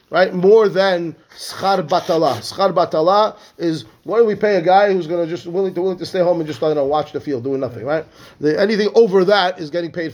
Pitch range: 150-190 Hz